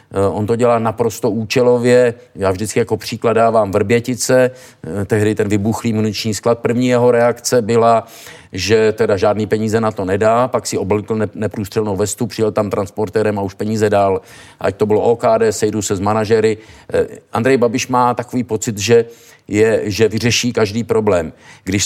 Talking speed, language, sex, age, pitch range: 160 wpm, Czech, male, 50-69, 105-120 Hz